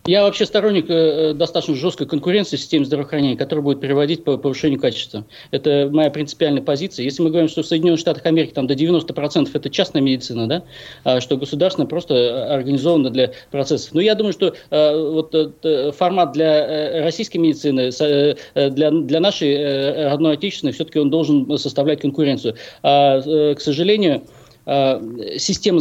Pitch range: 140-165 Hz